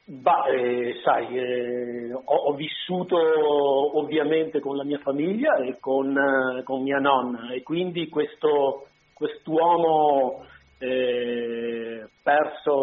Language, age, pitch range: Italian, 40-59, 125-155 Hz